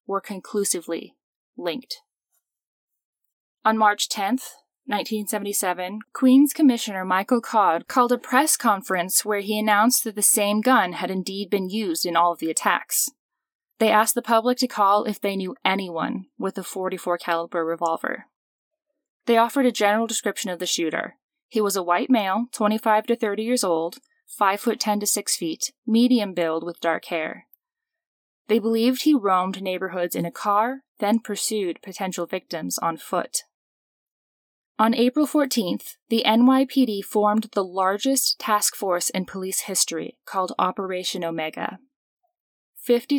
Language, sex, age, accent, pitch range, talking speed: English, female, 10-29, American, 185-250 Hz, 145 wpm